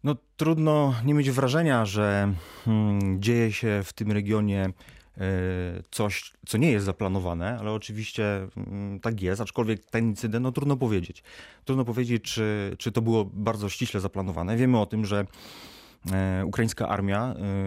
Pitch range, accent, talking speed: 95-115 Hz, native, 135 wpm